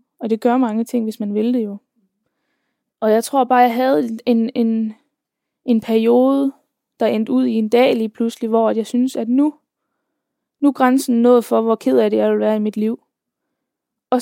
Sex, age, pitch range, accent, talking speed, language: female, 20-39, 210-260 Hz, native, 205 wpm, Danish